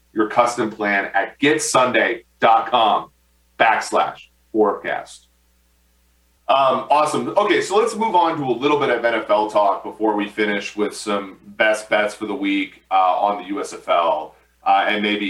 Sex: male